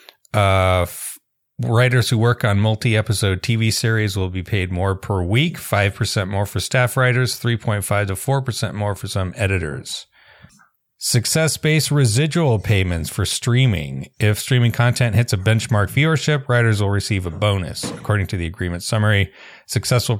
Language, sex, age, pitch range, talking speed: English, male, 30-49, 100-120 Hz, 150 wpm